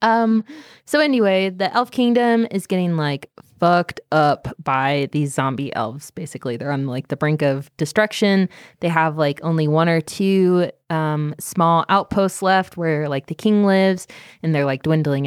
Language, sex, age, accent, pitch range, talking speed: English, female, 20-39, American, 150-195 Hz, 170 wpm